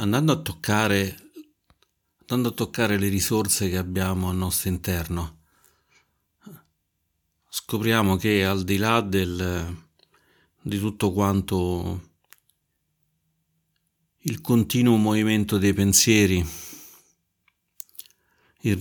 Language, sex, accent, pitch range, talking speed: Italian, male, native, 90-110 Hz, 90 wpm